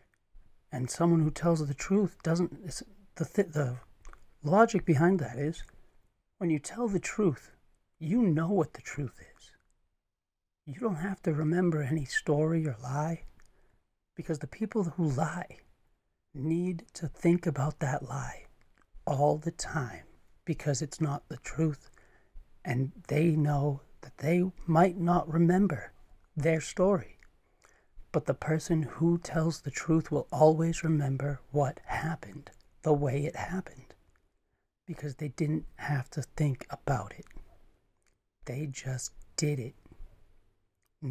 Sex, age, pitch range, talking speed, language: male, 40-59, 140-170 Hz, 135 wpm, English